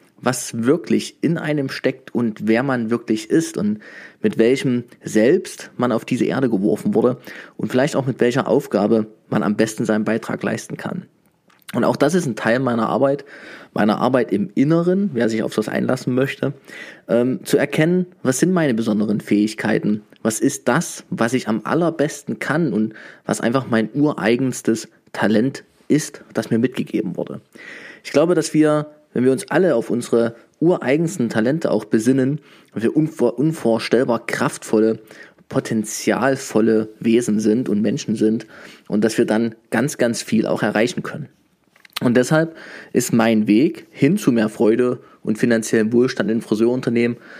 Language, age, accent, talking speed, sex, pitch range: German, 20-39, German, 160 wpm, male, 110-140 Hz